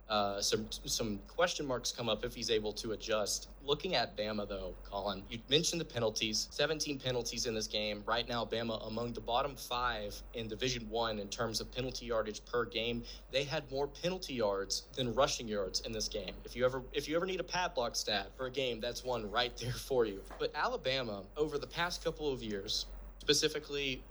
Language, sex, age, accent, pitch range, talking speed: English, male, 20-39, American, 120-150 Hz, 205 wpm